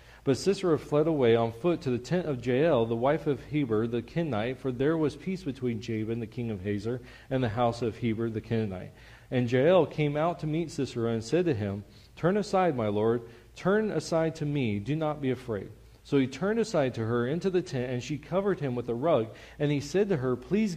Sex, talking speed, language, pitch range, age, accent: male, 230 wpm, English, 120-160 Hz, 40-59, American